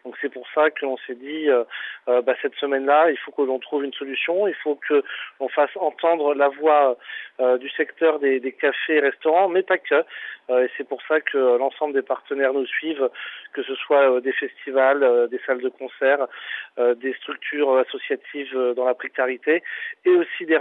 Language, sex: French, male